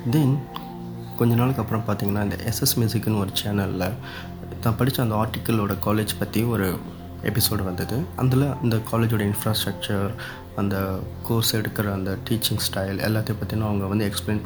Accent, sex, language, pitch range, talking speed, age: native, male, Tamil, 100-115 Hz, 140 wpm, 20-39